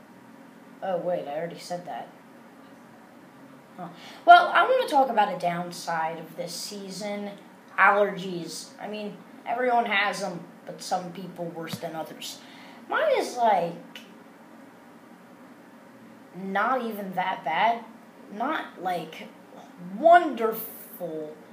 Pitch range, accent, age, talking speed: 195-265 Hz, American, 20-39, 110 wpm